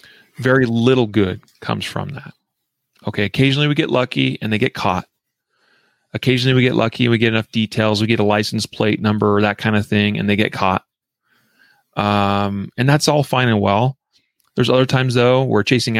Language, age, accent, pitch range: English, 30-49, American, 105-125 Hz